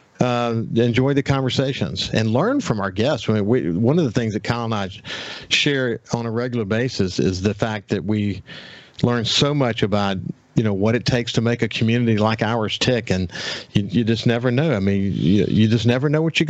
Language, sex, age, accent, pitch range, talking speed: English, male, 50-69, American, 105-130 Hz, 210 wpm